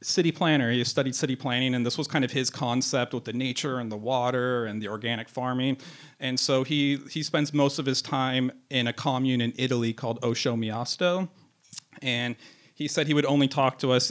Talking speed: 210 wpm